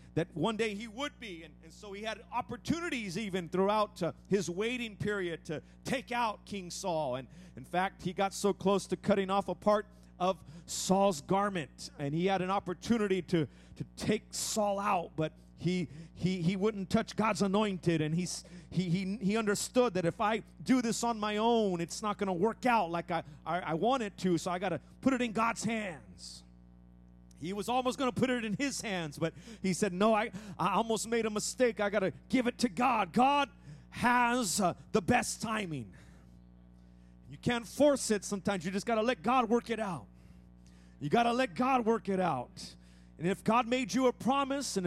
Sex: male